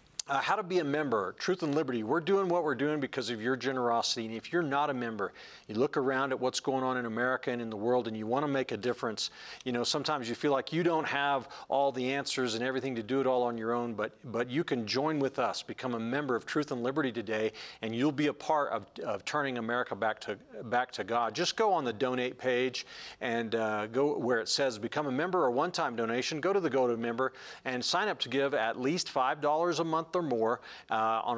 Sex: male